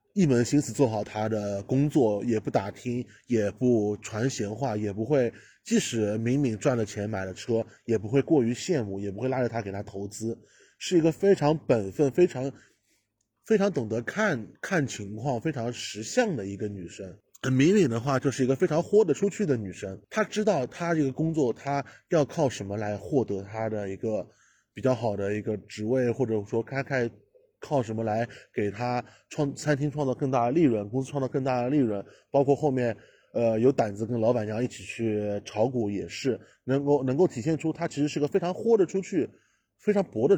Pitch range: 110-150 Hz